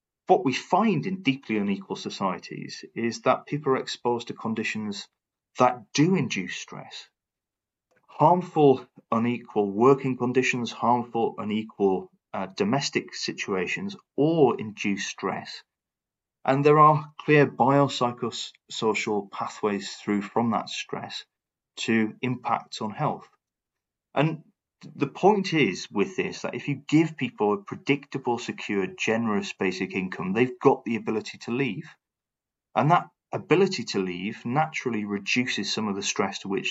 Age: 30-49